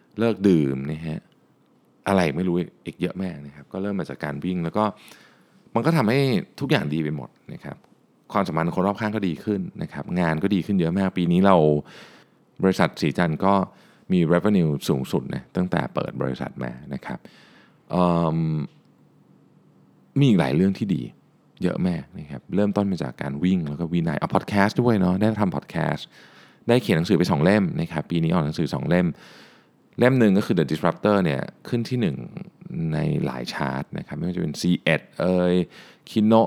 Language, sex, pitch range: Thai, male, 80-105 Hz